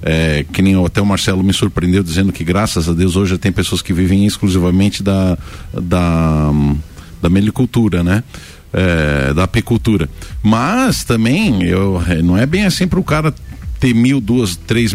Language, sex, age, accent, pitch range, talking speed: Portuguese, male, 50-69, Brazilian, 90-120 Hz, 155 wpm